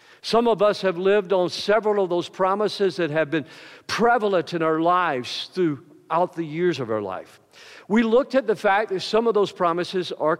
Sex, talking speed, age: male, 195 wpm, 50-69